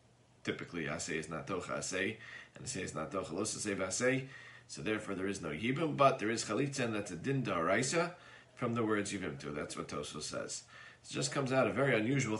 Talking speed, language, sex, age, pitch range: 220 wpm, English, male, 40-59, 105-140 Hz